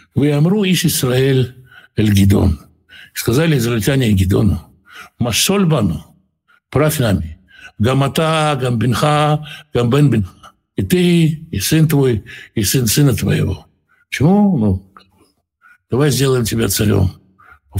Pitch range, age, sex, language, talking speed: 100-150 Hz, 60-79, male, Russian, 100 wpm